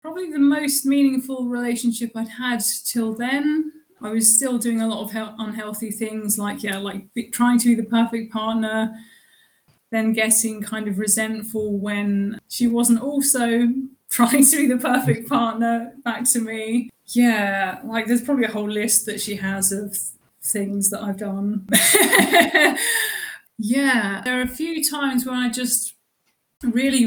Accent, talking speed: British, 155 wpm